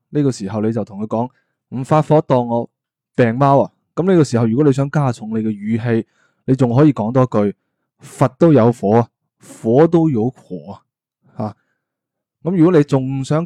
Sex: male